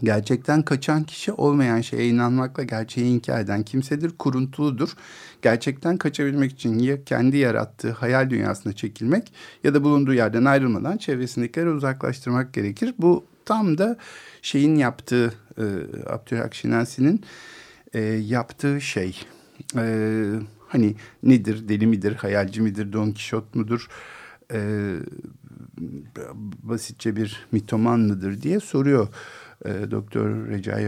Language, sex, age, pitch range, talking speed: Turkish, male, 50-69, 110-140 Hz, 100 wpm